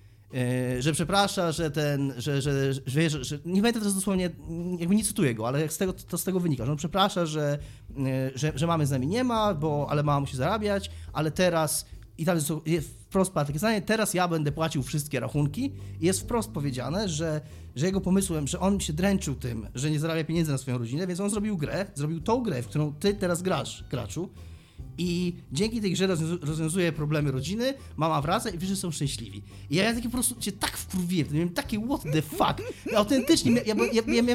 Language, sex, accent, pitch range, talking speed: Polish, male, native, 150-215 Hz, 210 wpm